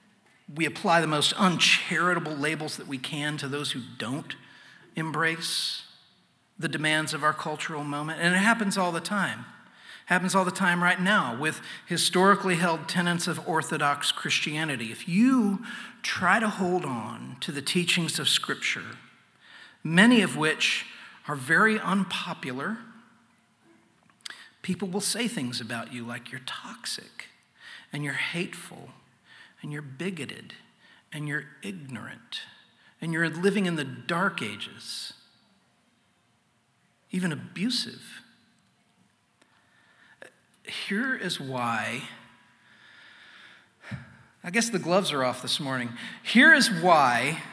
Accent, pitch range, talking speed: American, 145-195 Hz, 125 wpm